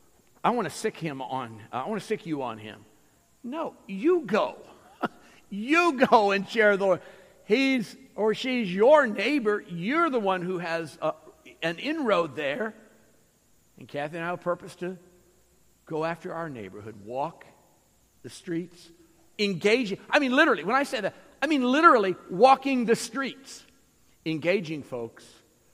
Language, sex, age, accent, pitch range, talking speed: English, male, 50-69, American, 150-220 Hz, 155 wpm